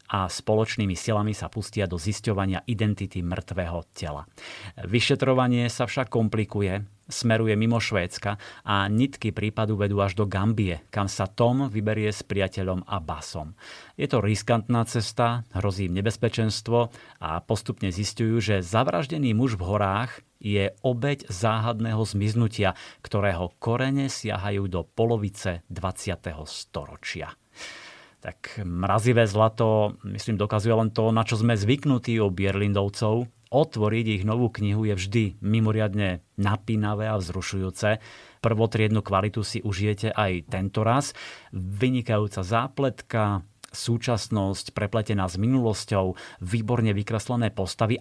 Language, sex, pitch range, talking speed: Slovak, male, 100-115 Hz, 120 wpm